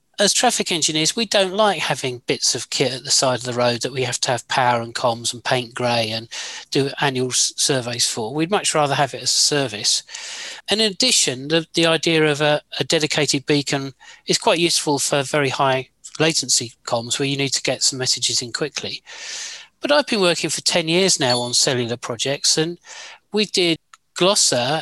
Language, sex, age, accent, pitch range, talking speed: English, male, 40-59, British, 130-180 Hz, 200 wpm